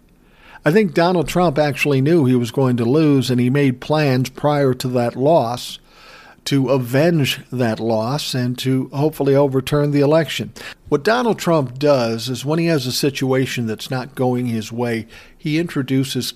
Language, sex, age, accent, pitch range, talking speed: English, male, 50-69, American, 125-150 Hz, 170 wpm